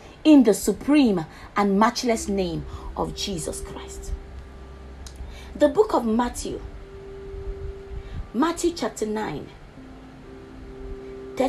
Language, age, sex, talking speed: English, 30-49, female, 85 wpm